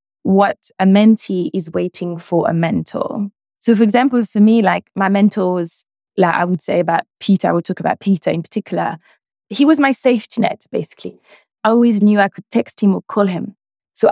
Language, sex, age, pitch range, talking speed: English, female, 20-39, 180-220 Hz, 195 wpm